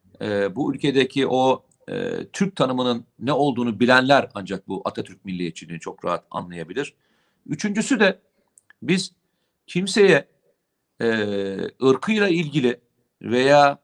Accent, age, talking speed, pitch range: native, 50-69, 110 wpm, 115-175 Hz